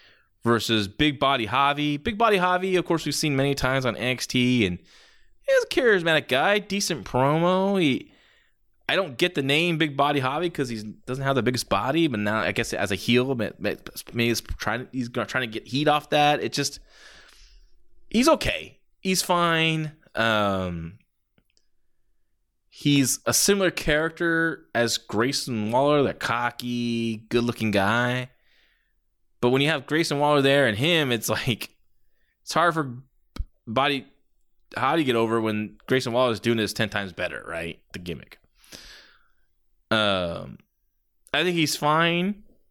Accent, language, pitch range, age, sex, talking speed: American, English, 115-160 Hz, 20-39, male, 155 wpm